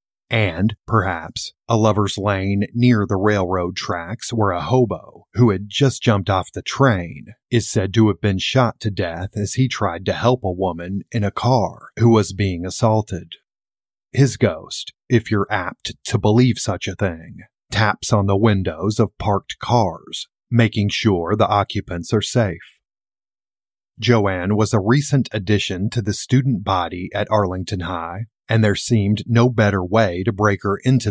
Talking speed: 165 wpm